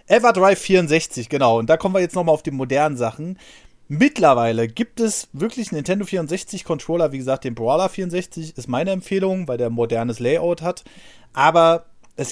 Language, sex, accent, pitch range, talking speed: German, male, German, 125-185 Hz, 170 wpm